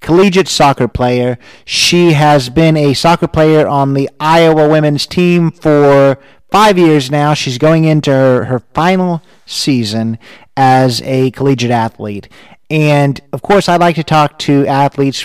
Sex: male